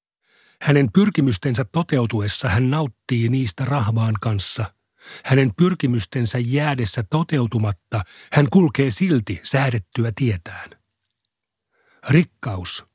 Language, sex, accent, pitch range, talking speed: Finnish, male, native, 110-140 Hz, 85 wpm